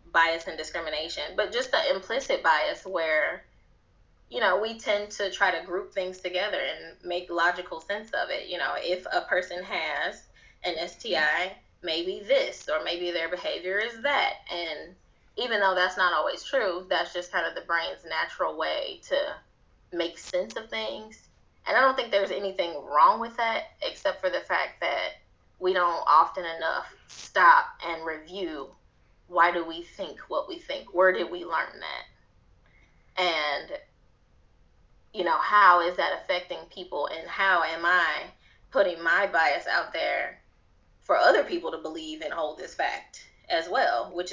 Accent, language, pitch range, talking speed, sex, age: American, English, 170-230 Hz, 165 wpm, female, 20-39